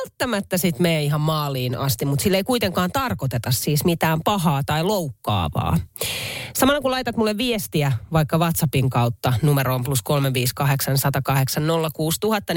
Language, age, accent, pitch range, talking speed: Finnish, 30-49, native, 140-220 Hz, 130 wpm